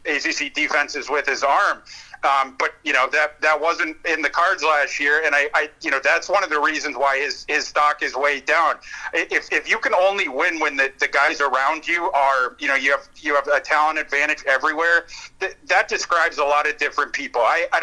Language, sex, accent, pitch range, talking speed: English, male, American, 145-175 Hz, 225 wpm